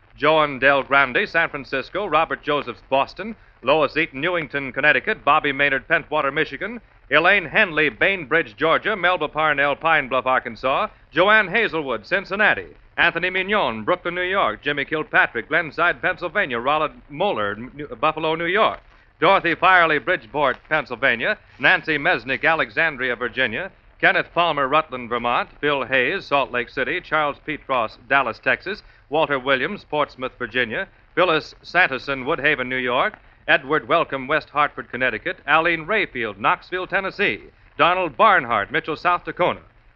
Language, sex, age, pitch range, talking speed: English, male, 40-59, 130-170 Hz, 130 wpm